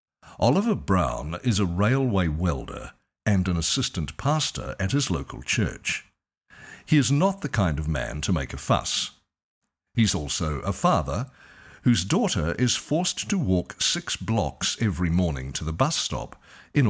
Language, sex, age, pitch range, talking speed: English, male, 60-79, 80-120 Hz, 155 wpm